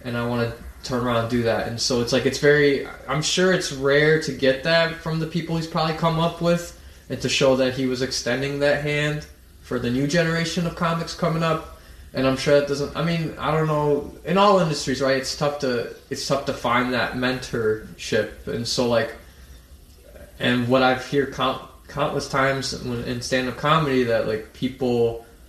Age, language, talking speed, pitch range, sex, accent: 20-39, English, 200 wpm, 110-140 Hz, male, American